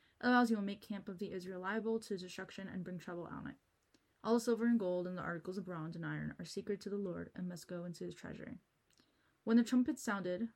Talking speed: 245 wpm